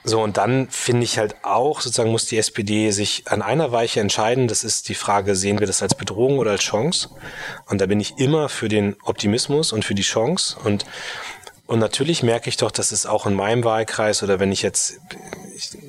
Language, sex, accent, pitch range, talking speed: German, male, German, 95-110 Hz, 215 wpm